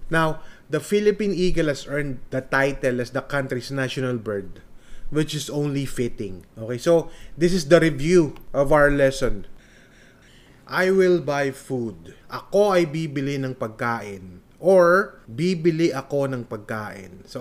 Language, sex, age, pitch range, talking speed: Filipino, male, 20-39, 125-165 Hz, 140 wpm